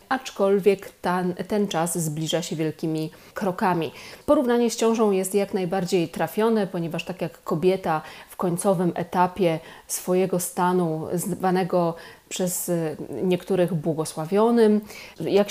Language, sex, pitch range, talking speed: Polish, female, 170-200 Hz, 110 wpm